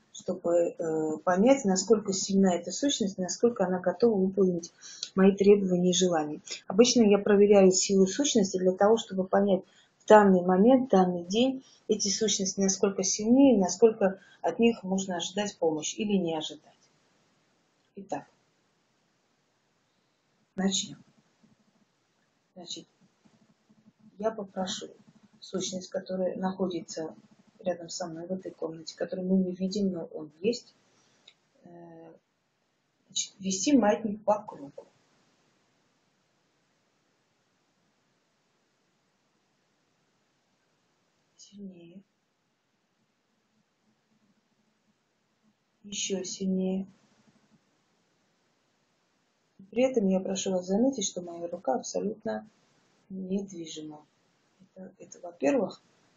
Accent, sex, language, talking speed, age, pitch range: native, female, Russian, 90 wpm, 30-49, 180-215 Hz